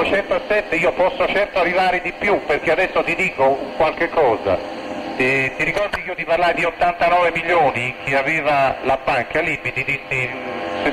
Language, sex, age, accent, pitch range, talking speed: Italian, male, 40-59, native, 155-200 Hz, 175 wpm